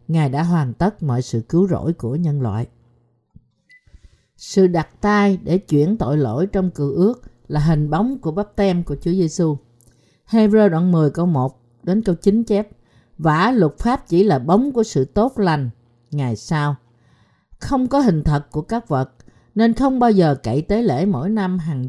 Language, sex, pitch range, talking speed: Vietnamese, female, 140-210 Hz, 185 wpm